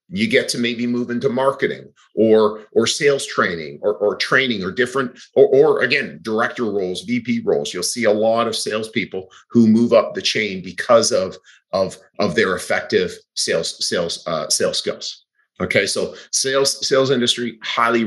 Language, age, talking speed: English, 40-59, 170 wpm